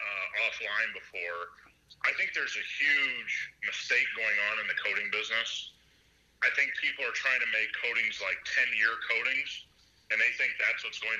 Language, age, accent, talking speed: English, 40-59, American, 170 wpm